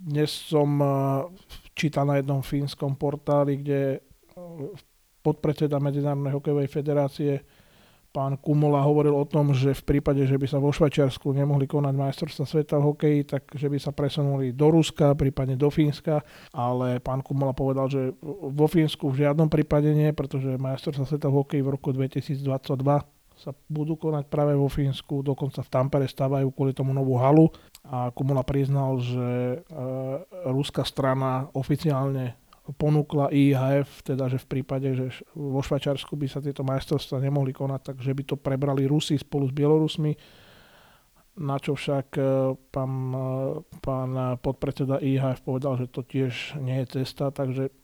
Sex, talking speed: male, 150 wpm